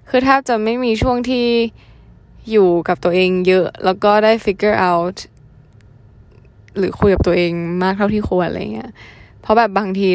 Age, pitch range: 10-29, 170-210 Hz